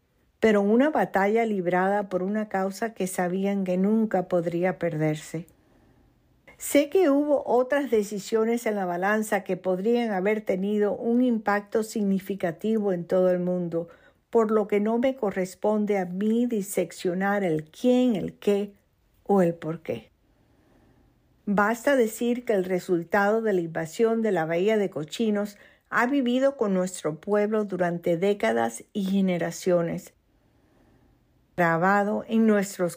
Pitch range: 180-220 Hz